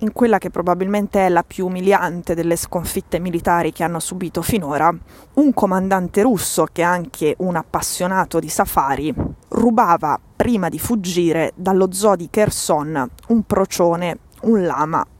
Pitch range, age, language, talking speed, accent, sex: 165-200 Hz, 20-39, Italian, 145 wpm, native, female